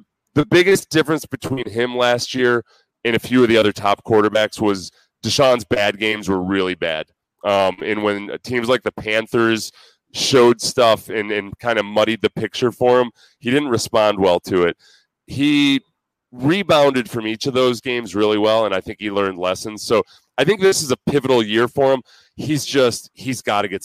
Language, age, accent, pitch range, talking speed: English, 30-49, American, 105-135 Hz, 195 wpm